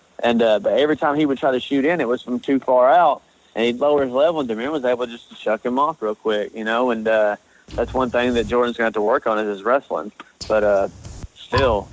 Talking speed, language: 275 wpm, English